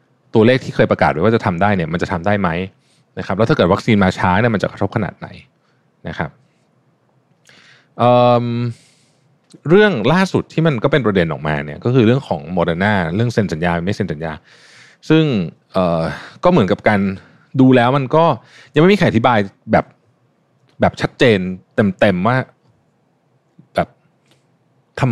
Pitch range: 105-155 Hz